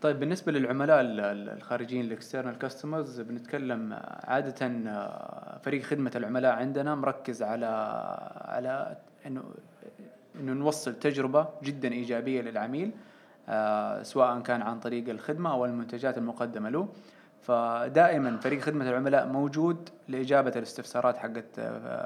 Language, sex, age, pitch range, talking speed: Arabic, male, 20-39, 120-140 Hz, 105 wpm